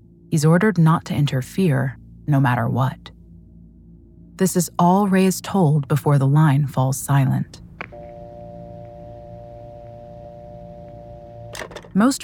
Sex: female